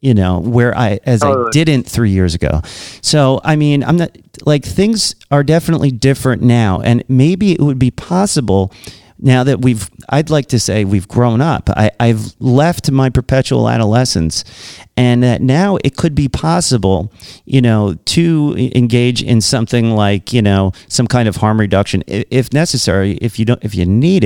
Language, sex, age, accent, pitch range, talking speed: English, male, 40-59, American, 105-140 Hz, 180 wpm